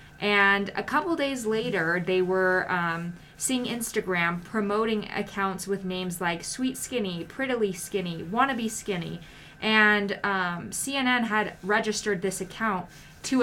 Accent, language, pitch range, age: American, English, 180-210 Hz, 20-39